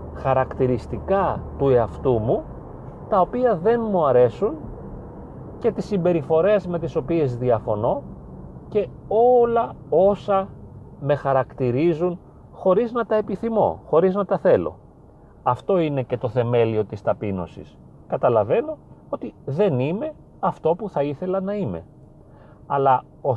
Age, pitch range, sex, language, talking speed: 40-59, 110-180 Hz, male, Greek, 125 wpm